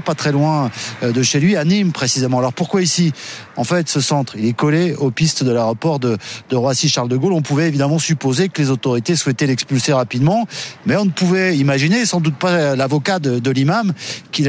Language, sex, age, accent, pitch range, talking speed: French, male, 40-59, French, 125-165 Hz, 205 wpm